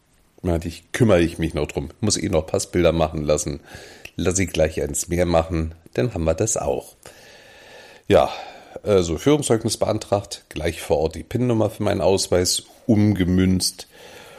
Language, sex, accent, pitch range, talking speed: German, male, German, 85-105 Hz, 150 wpm